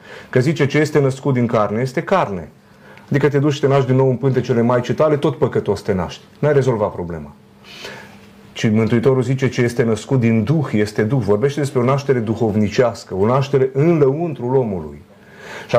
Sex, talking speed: male, 185 wpm